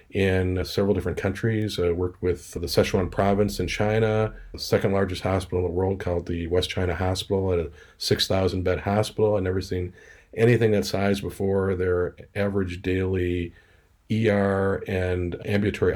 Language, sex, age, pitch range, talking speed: English, male, 40-59, 90-100 Hz, 155 wpm